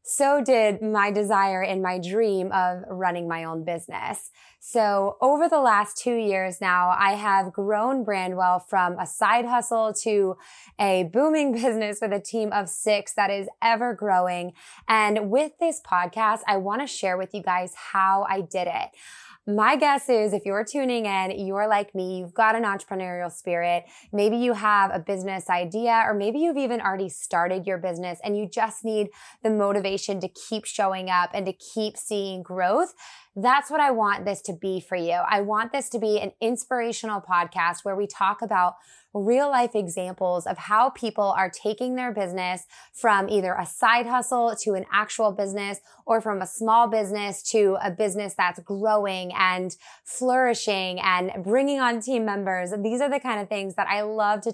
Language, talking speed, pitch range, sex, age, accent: English, 185 wpm, 185-225 Hz, female, 20-39, American